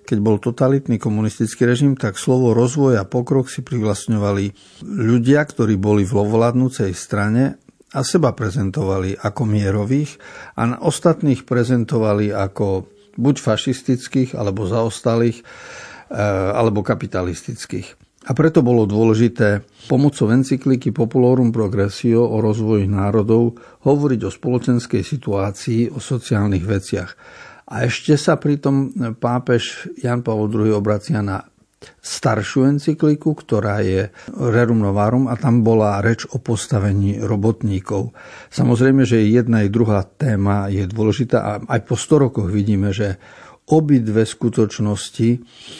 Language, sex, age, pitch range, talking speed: Slovak, male, 60-79, 105-130 Hz, 120 wpm